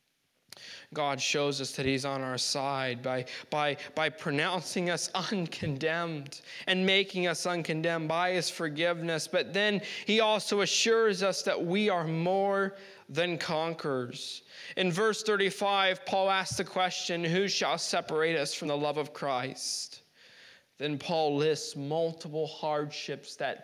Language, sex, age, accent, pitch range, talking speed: English, male, 20-39, American, 160-210 Hz, 140 wpm